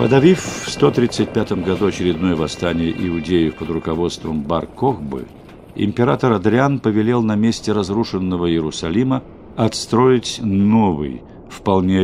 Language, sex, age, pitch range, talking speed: Russian, male, 50-69, 85-115 Hz, 100 wpm